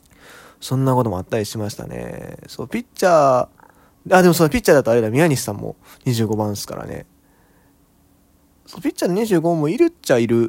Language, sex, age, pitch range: Japanese, male, 20-39, 110-170 Hz